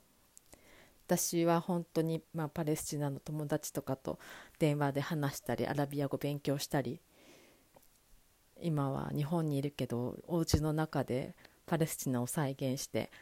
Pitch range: 130-160 Hz